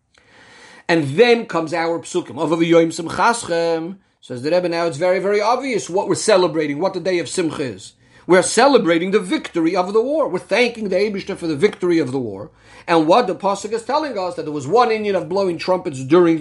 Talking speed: 200 wpm